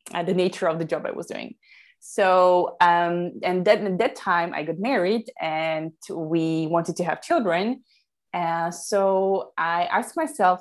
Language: English